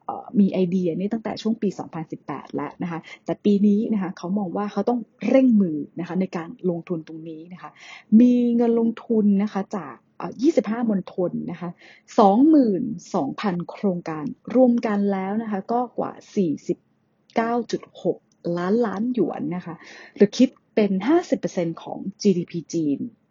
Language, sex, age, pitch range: English, female, 30-49, 175-230 Hz